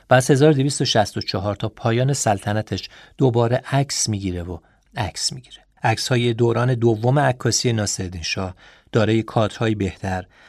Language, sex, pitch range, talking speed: Persian, male, 100-130 Hz, 120 wpm